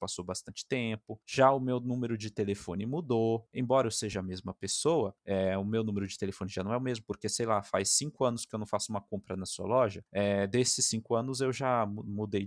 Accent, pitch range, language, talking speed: Brazilian, 105-150 Hz, Portuguese, 235 wpm